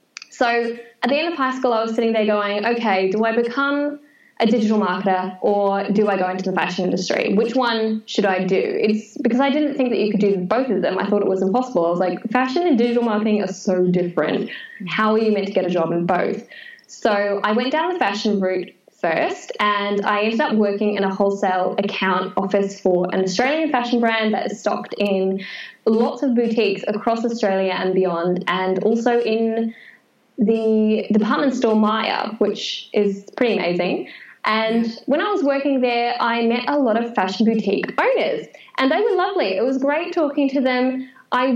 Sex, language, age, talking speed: female, English, 10-29, 200 wpm